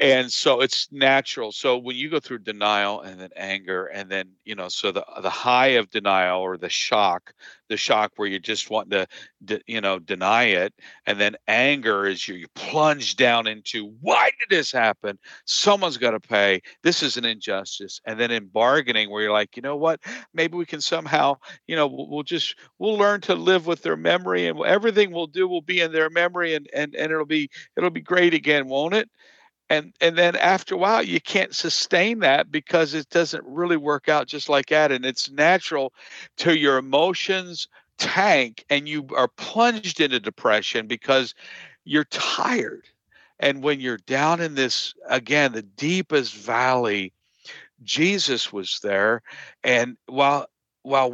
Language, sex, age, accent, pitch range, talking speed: English, male, 50-69, American, 115-160 Hz, 180 wpm